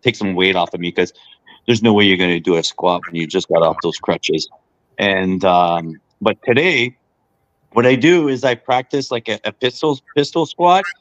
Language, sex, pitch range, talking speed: English, male, 95-120 Hz, 215 wpm